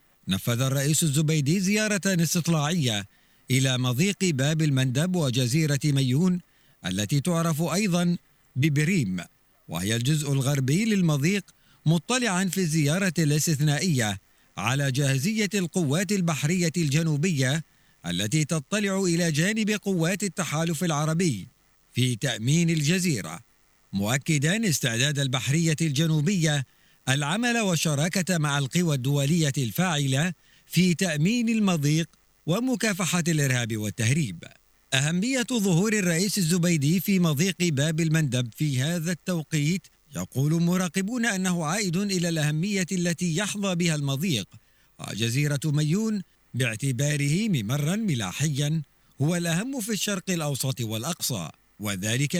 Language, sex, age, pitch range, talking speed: Arabic, male, 50-69, 140-185 Hz, 100 wpm